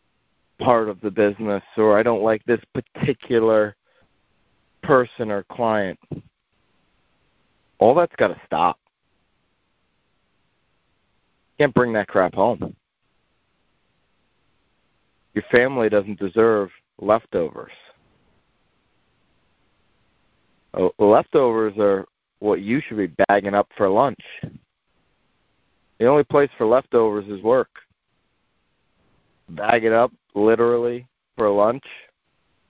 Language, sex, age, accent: English, male, 40-59, American